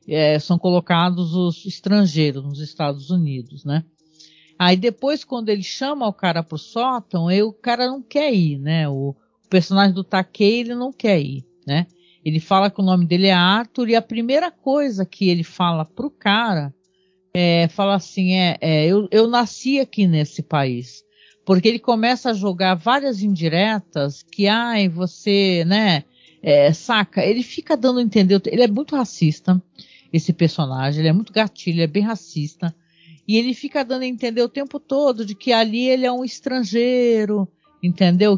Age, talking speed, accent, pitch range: 50-69, 175 wpm, Brazilian, 170-235 Hz